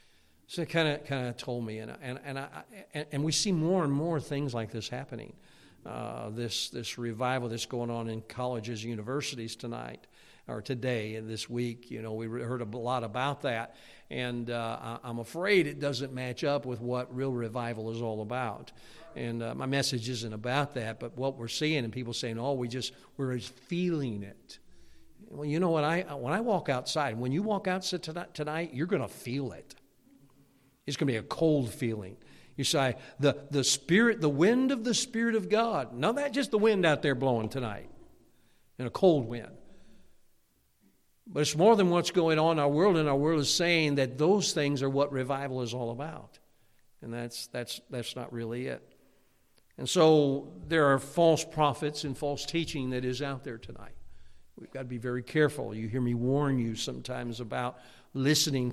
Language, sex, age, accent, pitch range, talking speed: English, male, 50-69, American, 120-150 Hz, 200 wpm